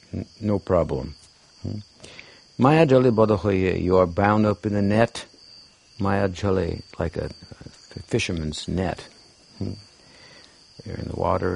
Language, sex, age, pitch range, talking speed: English, male, 60-79, 90-110 Hz, 125 wpm